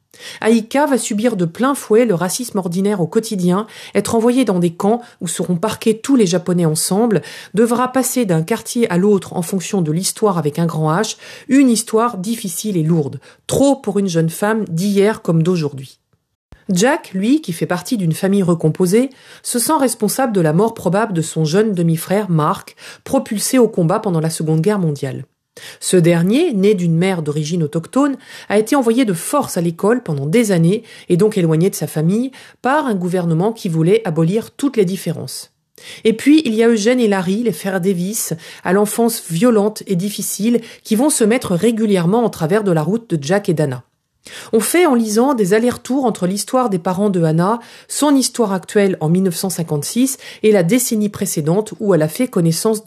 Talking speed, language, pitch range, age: 190 wpm, French, 175-230 Hz, 40-59